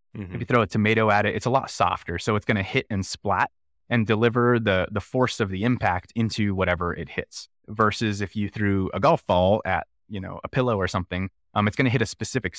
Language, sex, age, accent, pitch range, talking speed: English, male, 20-39, American, 95-115 Hz, 245 wpm